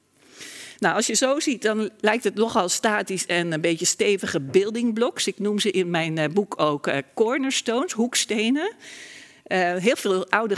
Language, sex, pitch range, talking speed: Dutch, female, 180-245 Hz, 170 wpm